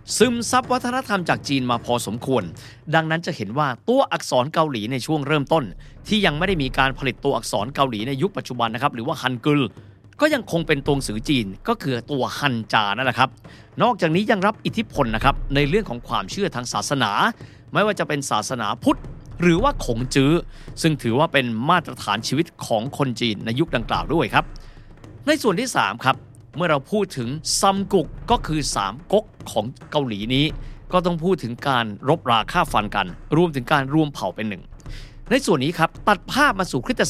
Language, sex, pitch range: Thai, male, 125-180 Hz